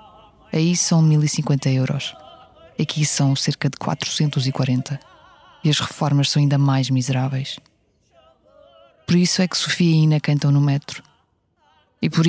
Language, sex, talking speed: Portuguese, female, 135 wpm